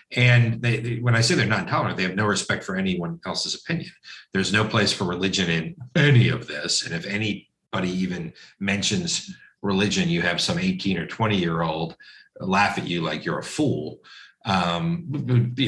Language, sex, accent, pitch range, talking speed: English, male, American, 95-115 Hz, 185 wpm